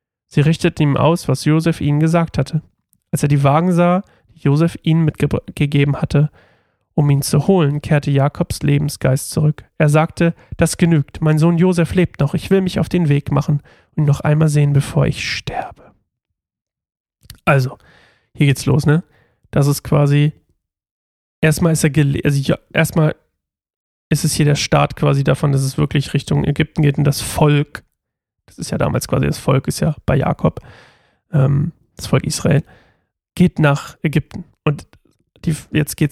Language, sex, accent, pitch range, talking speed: German, male, German, 140-160 Hz, 175 wpm